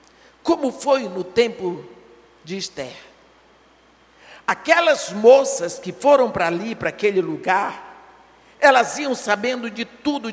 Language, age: Portuguese, 60-79